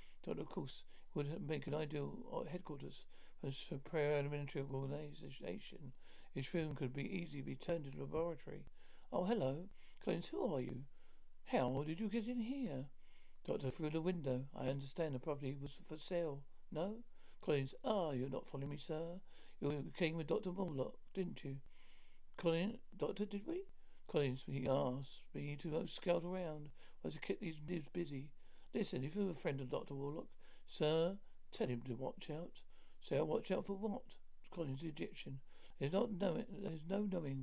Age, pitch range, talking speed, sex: 60-79, 140-185 Hz, 170 wpm, male